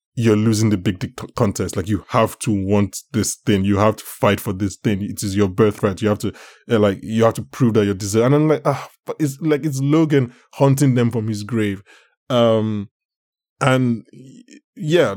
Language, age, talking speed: English, 20-39, 200 wpm